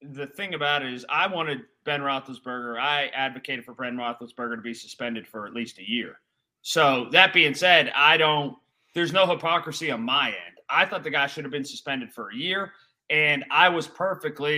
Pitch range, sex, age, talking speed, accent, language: 135-180 Hz, male, 30-49, 200 wpm, American, English